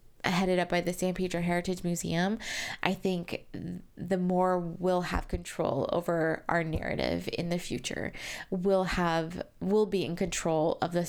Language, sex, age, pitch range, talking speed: English, female, 20-39, 175-200 Hz, 155 wpm